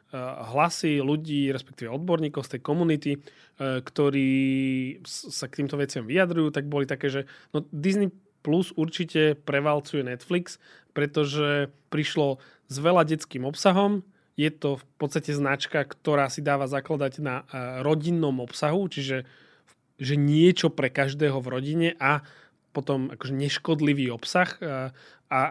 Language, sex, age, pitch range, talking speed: Slovak, male, 30-49, 135-155 Hz, 125 wpm